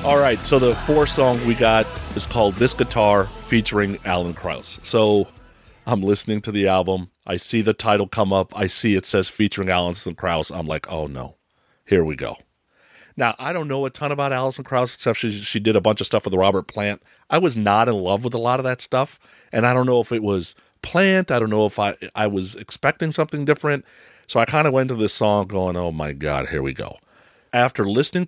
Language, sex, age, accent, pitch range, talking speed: English, male, 40-59, American, 100-145 Hz, 225 wpm